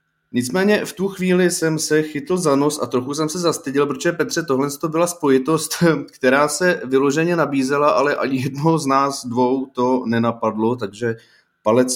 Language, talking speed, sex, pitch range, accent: Czech, 170 wpm, male, 115-145 Hz, native